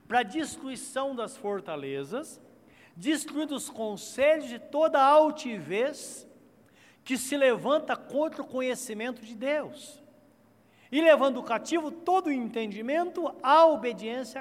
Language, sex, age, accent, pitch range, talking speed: Portuguese, male, 60-79, Brazilian, 215-290 Hz, 110 wpm